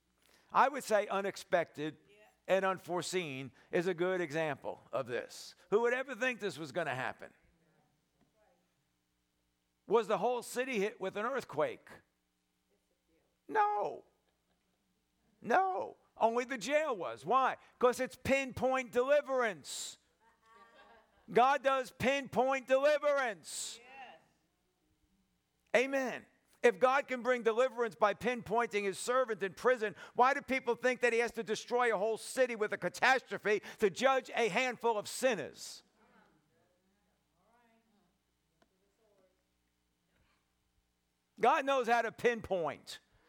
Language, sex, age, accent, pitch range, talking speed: English, male, 50-69, American, 185-255 Hz, 115 wpm